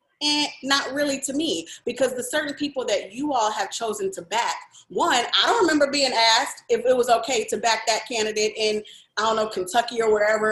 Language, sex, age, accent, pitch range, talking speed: English, female, 30-49, American, 215-325 Hz, 210 wpm